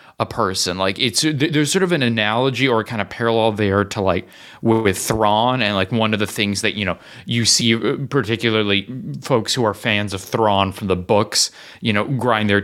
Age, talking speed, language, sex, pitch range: 30-49, 205 wpm, English, male, 100-140 Hz